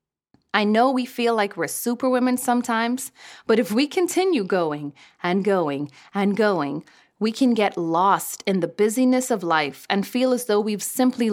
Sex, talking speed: female, 170 wpm